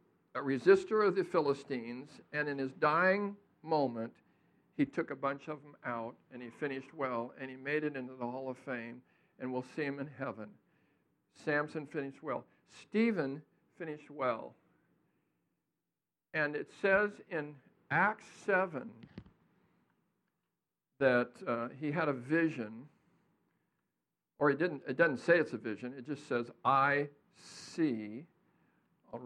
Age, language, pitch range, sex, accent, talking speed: 60-79, English, 130-170 Hz, male, American, 140 wpm